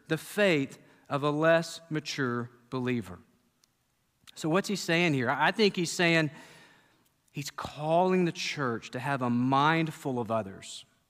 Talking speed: 145 wpm